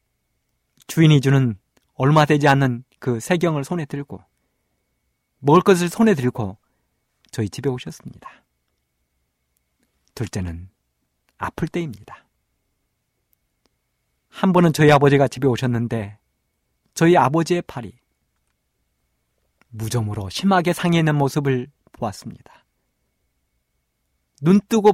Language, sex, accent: Korean, male, native